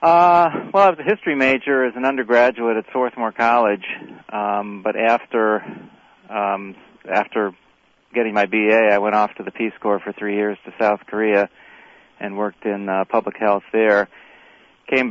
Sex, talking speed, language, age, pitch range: male, 165 wpm, English, 40-59, 100-115 Hz